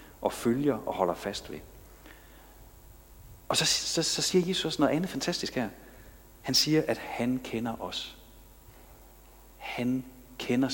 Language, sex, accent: Danish, male, native